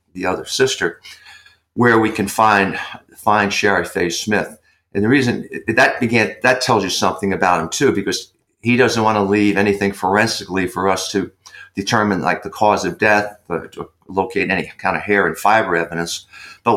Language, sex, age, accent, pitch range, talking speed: English, male, 50-69, American, 95-115 Hz, 180 wpm